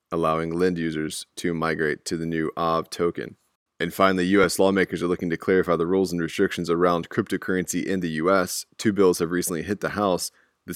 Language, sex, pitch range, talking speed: English, male, 85-95 Hz, 195 wpm